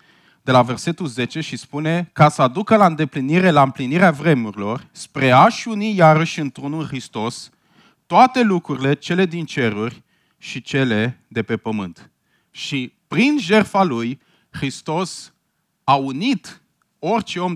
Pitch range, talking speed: 120-175 Hz, 135 wpm